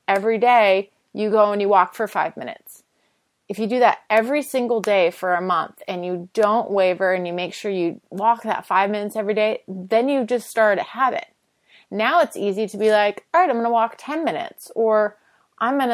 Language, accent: English, American